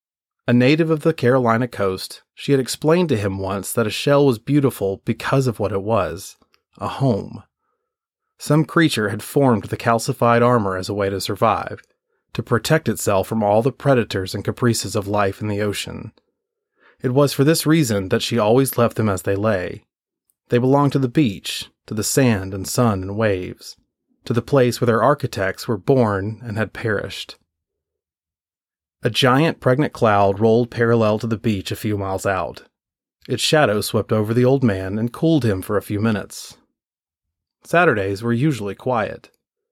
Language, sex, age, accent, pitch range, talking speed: English, male, 30-49, American, 100-135 Hz, 175 wpm